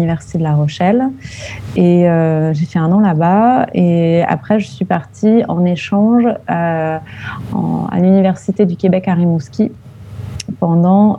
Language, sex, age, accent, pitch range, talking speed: French, female, 30-49, French, 155-195 Hz, 145 wpm